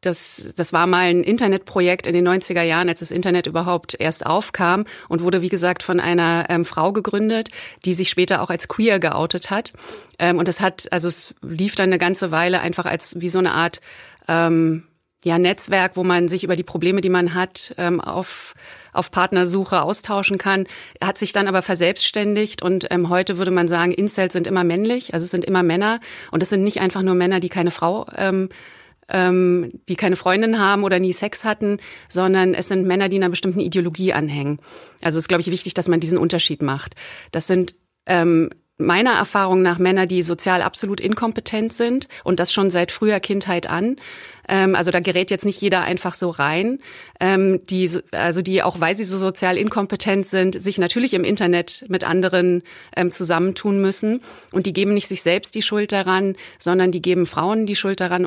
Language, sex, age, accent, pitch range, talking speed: German, female, 30-49, German, 175-195 Hz, 190 wpm